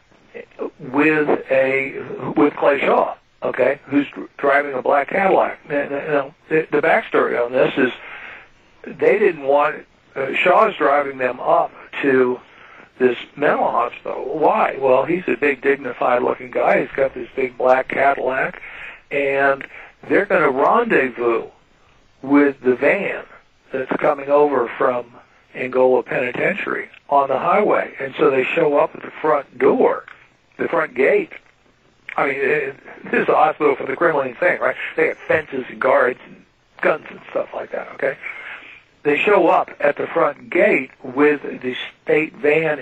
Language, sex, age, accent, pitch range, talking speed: English, male, 60-79, American, 130-165 Hz, 150 wpm